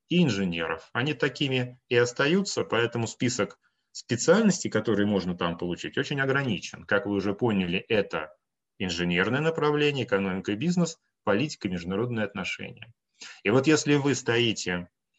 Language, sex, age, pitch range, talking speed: Russian, male, 30-49, 95-130 Hz, 135 wpm